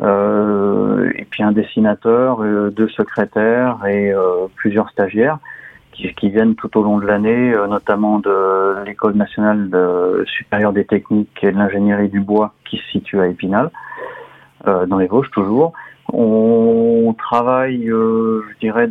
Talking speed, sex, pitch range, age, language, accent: 155 wpm, male, 100-115 Hz, 30-49, French, French